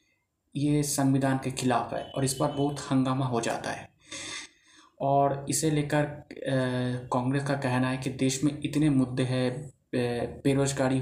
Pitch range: 130-150 Hz